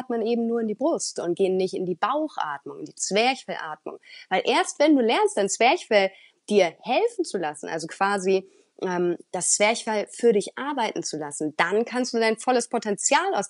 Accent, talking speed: German, 190 wpm